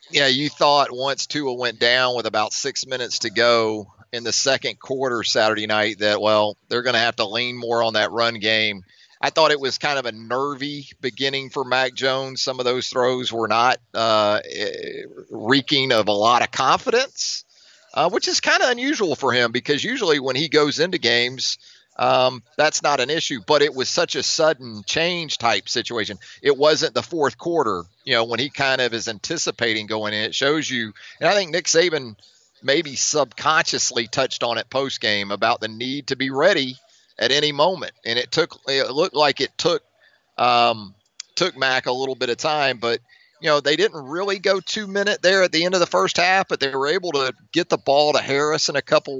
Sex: male